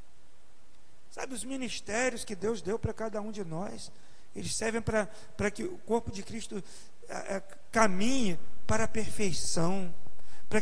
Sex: male